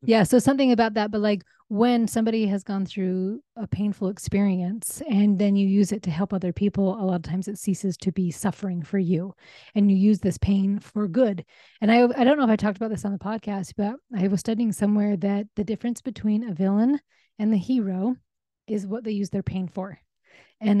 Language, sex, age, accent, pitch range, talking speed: English, female, 30-49, American, 185-210 Hz, 220 wpm